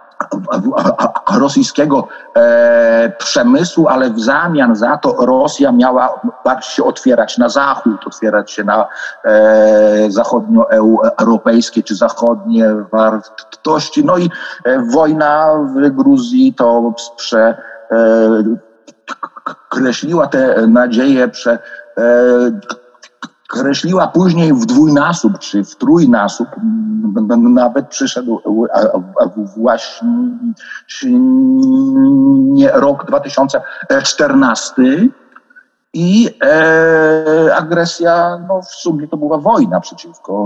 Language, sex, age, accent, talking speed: Polish, male, 50-69, native, 85 wpm